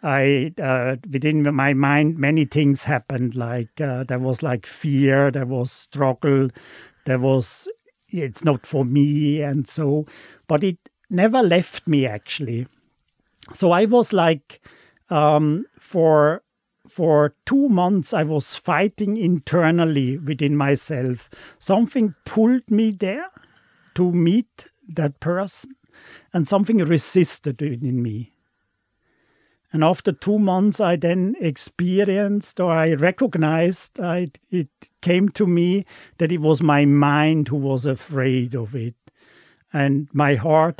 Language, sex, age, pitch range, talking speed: English, male, 50-69, 140-175 Hz, 130 wpm